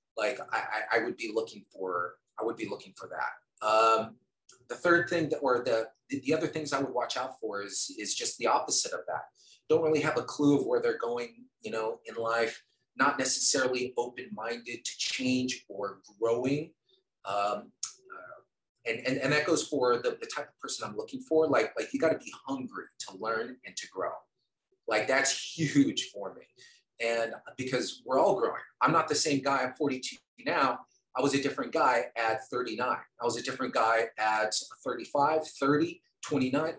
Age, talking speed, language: 30-49, 190 wpm, English